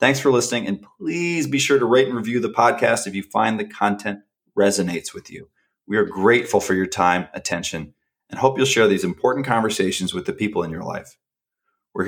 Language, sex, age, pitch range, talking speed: English, male, 30-49, 95-135 Hz, 210 wpm